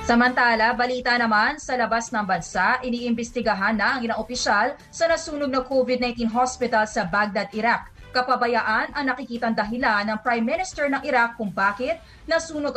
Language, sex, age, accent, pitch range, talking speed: English, female, 20-39, Filipino, 220-260 Hz, 145 wpm